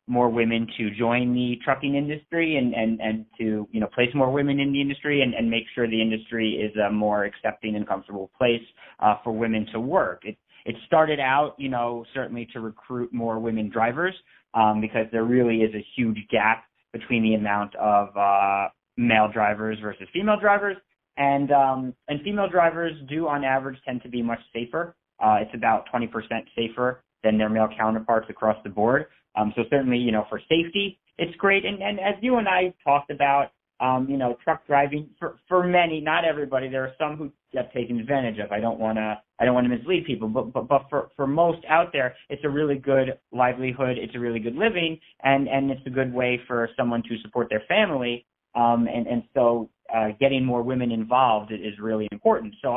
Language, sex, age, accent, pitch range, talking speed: English, male, 30-49, American, 110-140 Hz, 205 wpm